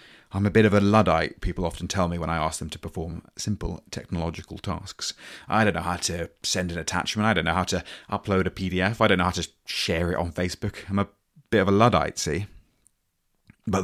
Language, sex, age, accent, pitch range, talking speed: English, male, 30-49, British, 85-100 Hz, 225 wpm